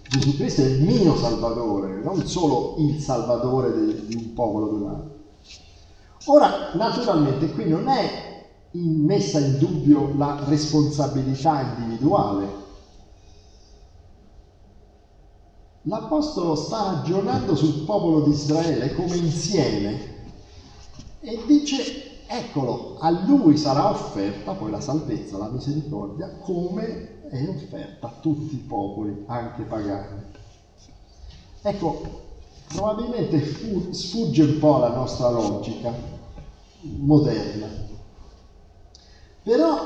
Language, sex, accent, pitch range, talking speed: Italian, male, native, 100-160 Hz, 100 wpm